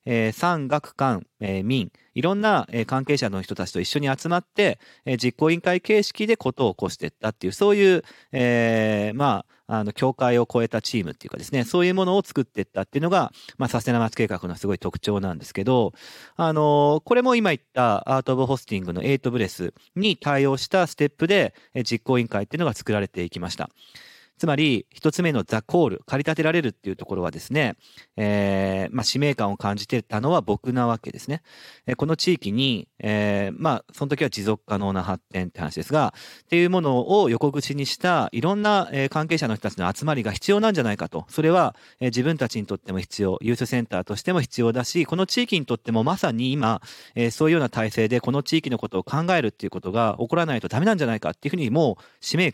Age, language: 40-59, Japanese